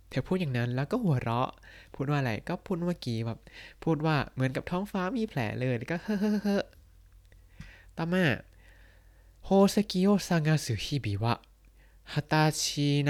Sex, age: male, 20-39